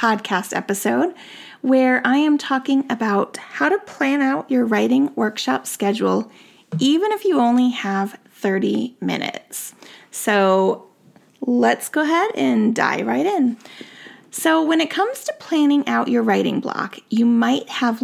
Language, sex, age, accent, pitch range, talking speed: English, female, 30-49, American, 230-295 Hz, 145 wpm